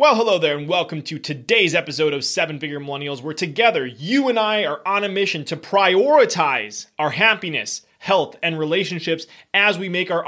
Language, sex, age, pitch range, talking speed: English, male, 30-49, 160-205 Hz, 185 wpm